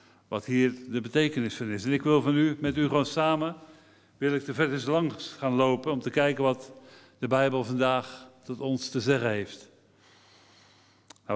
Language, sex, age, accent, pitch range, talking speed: Dutch, male, 50-69, Dutch, 115-145 Hz, 190 wpm